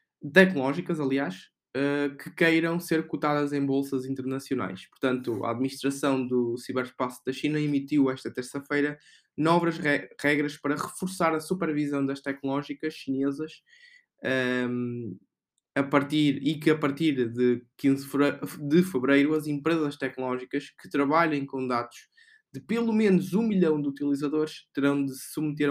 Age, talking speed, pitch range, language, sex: 20-39, 125 wpm, 135-160 Hz, Portuguese, male